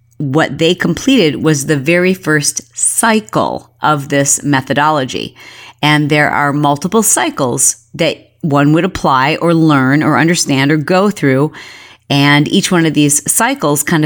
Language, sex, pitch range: English, female, 145-185 Hz